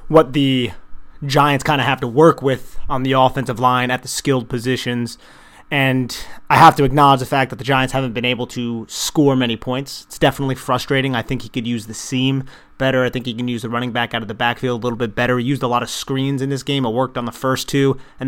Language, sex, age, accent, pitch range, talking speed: English, male, 30-49, American, 120-135 Hz, 255 wpm